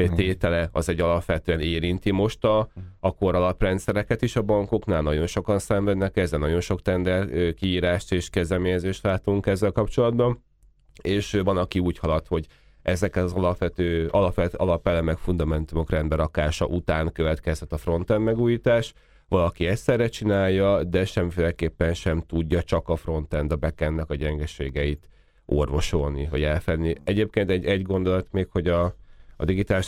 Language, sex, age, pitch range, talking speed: Hungarian, male, 30-49, 80-95 Hz, 140 wpm